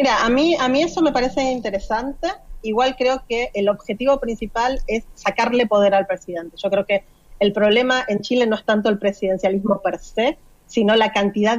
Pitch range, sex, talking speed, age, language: 195-240 Hz, female, 190 wpm, 30-49, Spanish